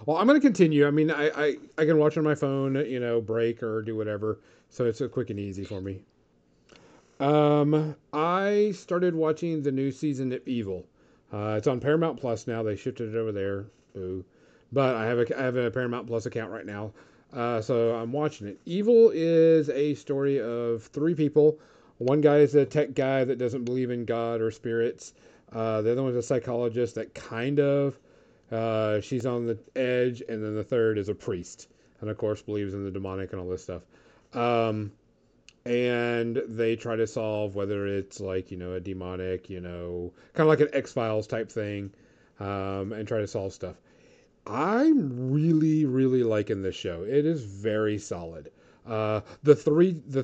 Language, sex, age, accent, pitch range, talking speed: English, male, 40-59, American, 105-140 Hz, 195 wpm